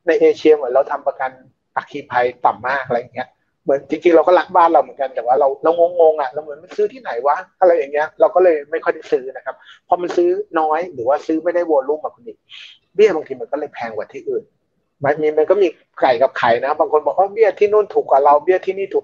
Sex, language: male, Thai